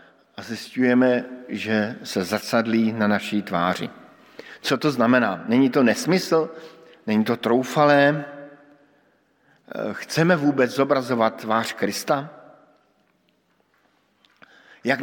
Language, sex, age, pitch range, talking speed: Slovak, male, 50-69, 115-140 Hz, 90 wpm